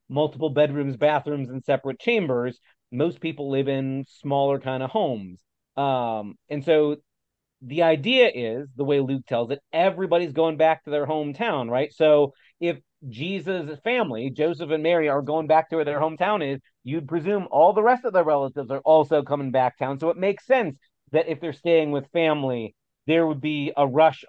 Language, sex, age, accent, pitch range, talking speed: English, male, 30-49, American, 135-165 Hz, 185 wpm